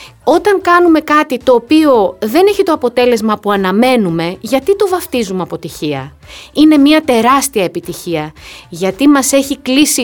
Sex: female